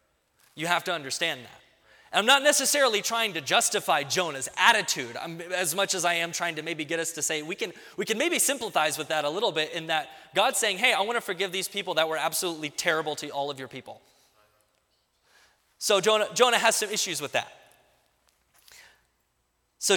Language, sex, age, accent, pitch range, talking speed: English, male, 20-39, American, 125-195 Hz, 200 wpm